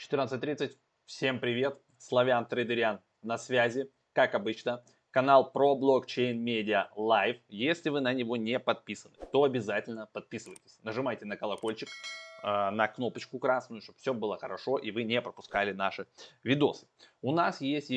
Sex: male